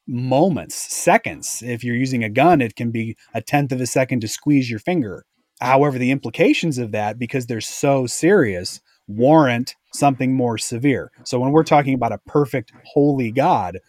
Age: 30-49